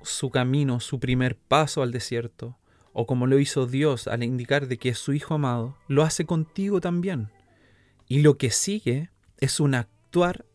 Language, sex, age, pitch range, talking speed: Spanish, male, 30-49, 115-145 Hz, 175 wpm